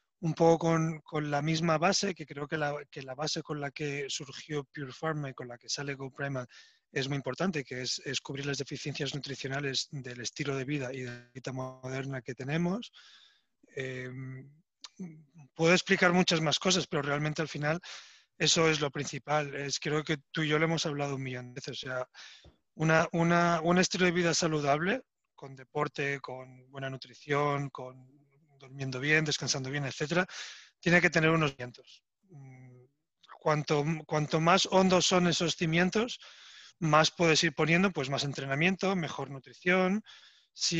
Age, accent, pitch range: 30-49, Spanish, 135-165 Hz